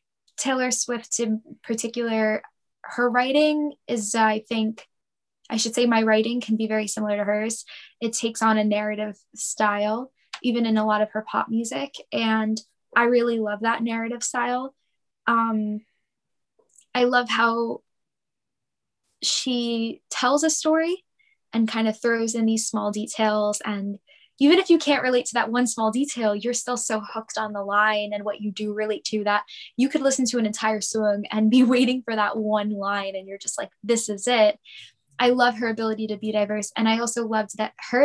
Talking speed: 185 wpm